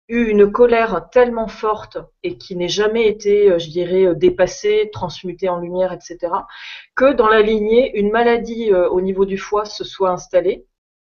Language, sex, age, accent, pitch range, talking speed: French, female, 30-49, French, 180-225 Hz, 165 wpm